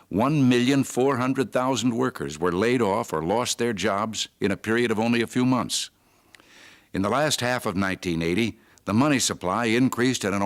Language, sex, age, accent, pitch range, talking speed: English, male, 60-79, American, 105-125 Hz, 160 wpm